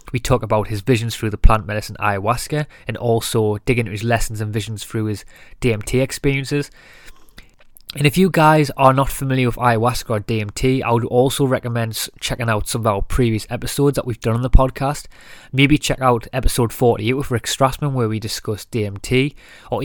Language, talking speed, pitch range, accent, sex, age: English, 190 wpm, 110-135 Hz, British, male, 20-39